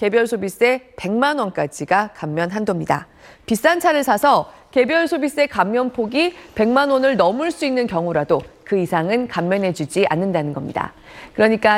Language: Korean